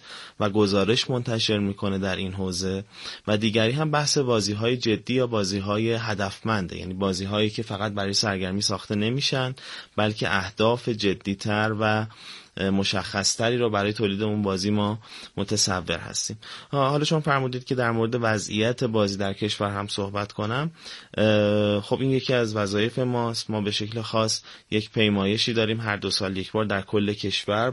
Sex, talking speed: male, 160 wpm